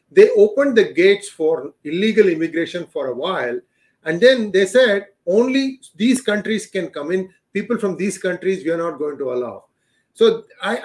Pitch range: 185-245 Hz